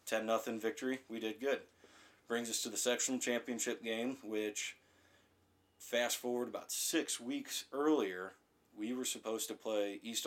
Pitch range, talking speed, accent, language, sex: 100-115 Hz, 150 wpm, American, English, male